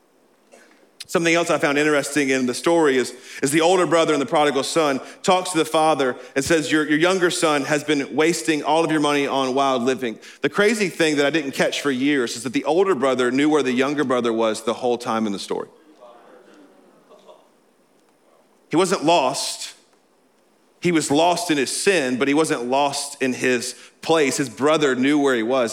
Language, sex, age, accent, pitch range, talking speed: English, male, 40-59, American, 125-180 Hz, 200 wpm